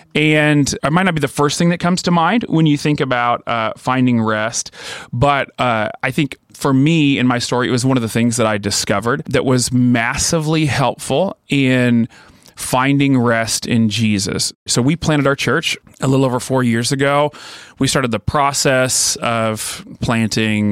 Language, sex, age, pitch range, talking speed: English, male, 30-49, 115-140 Hz, 180 wpm